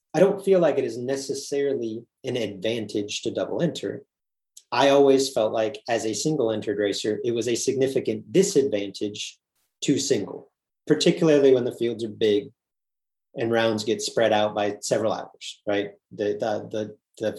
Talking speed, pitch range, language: 160 wpm, 105-140 Hz, English